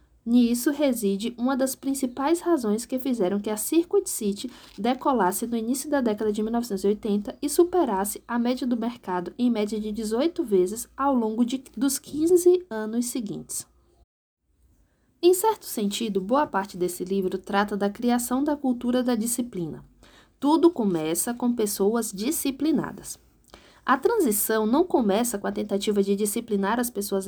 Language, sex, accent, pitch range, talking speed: Portuguese, female, Brazilian, 205-280 Hz, 145 wpm